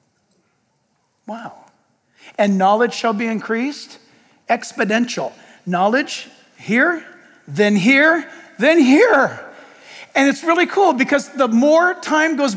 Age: 50-69